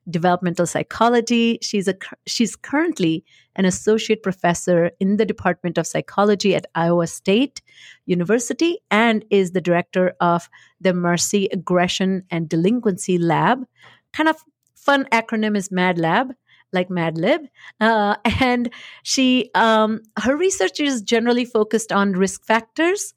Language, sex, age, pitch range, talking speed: English, female, 50-69, 170-220 Hz, 125 wpm